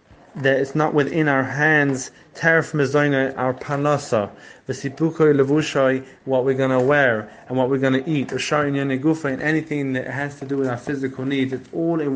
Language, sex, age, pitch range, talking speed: English, male, 30-49, 130-150 Hz, 160 wpm